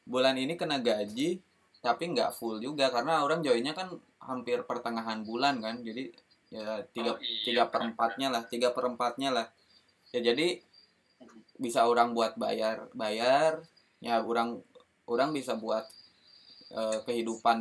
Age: 20-39